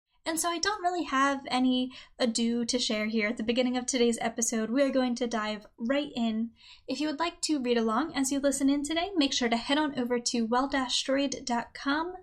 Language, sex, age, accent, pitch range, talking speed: English, female, 10-29, American, 235-295 Hz, 215 wpm